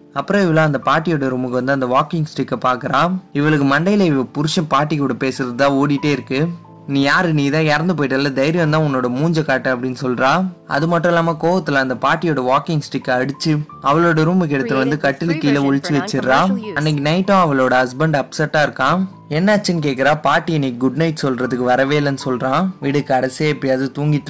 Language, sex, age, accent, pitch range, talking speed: Tamil, male, 20-39, native, 135-165 Hz, 165 wpm